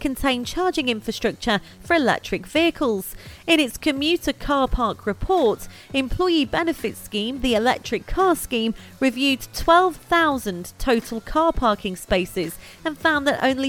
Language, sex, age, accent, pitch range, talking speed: English, female, 30-49, British, 200-300 Hz, 125 wpm